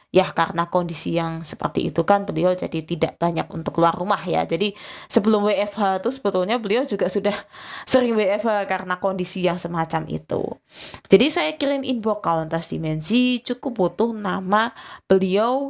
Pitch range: 170-205 Hz